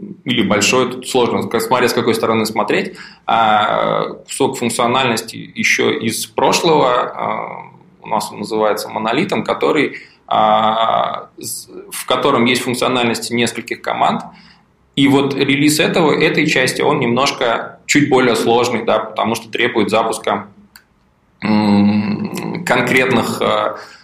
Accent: native